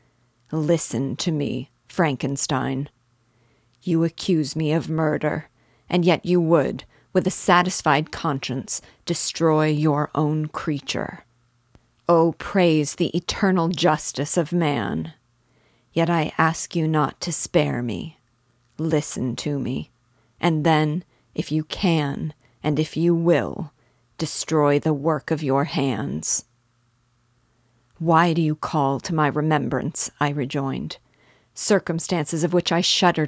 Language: English